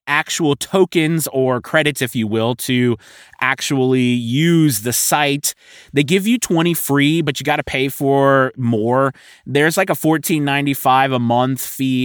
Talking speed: 155 wpm